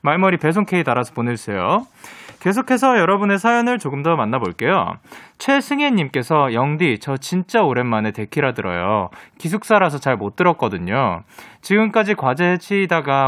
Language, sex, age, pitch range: Korean, male, 20-39, 120-195 Hz